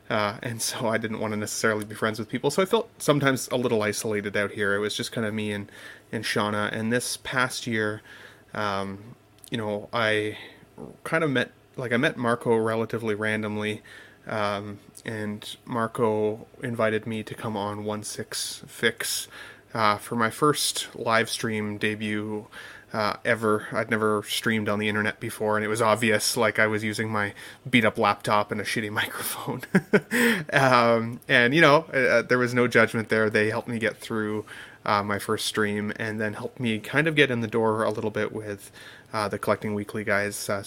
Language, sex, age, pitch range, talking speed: English, male, 30-49, 105-115 Hz, 190 wpm